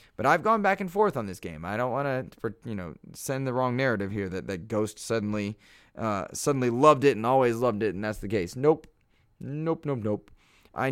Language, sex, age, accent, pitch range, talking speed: English, male, 20-39, American, 100-125 Hz, 225 wpm